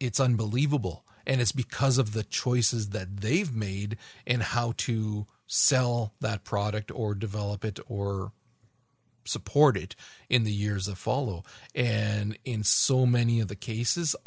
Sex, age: male, 40-59